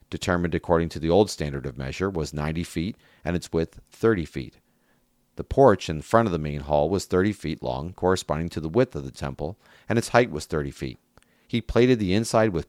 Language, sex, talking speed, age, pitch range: English, male, 220 wpm, 40-59, 80-100 Hz